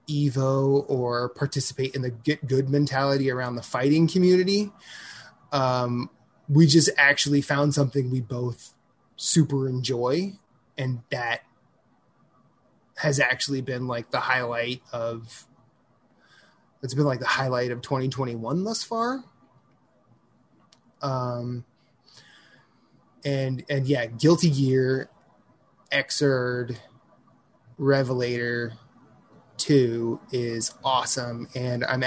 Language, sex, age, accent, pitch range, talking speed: English, male, 20-39, American, 125-145 Hz, 100 wpm